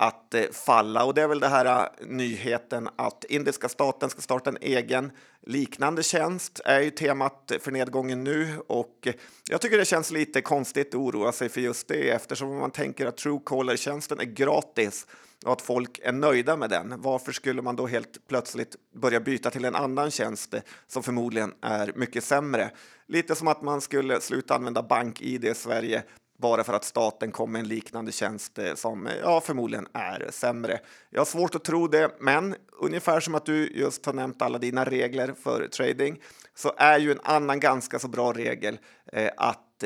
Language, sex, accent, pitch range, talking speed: Swedish, male, native, 115-145 Hz, 185 wpm